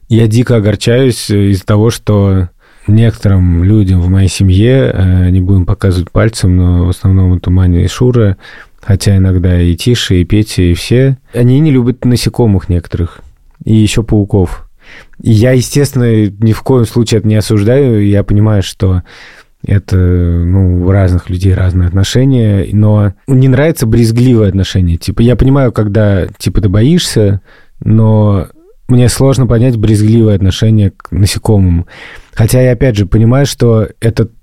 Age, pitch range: 30-49, 95-115 Hz